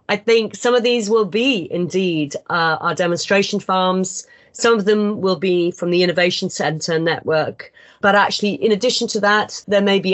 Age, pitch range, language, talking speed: 40-59, 175-220 Hz, English, 185 wpm